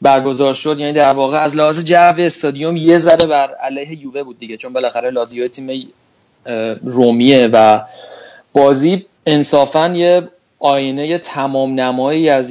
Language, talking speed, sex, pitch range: Persian, 140 wpm, male, 125-145 Hz